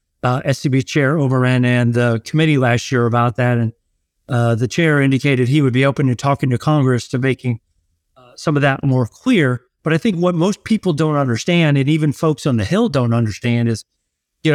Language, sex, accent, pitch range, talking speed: English, male, American, 125-155 Hz, 205 wpm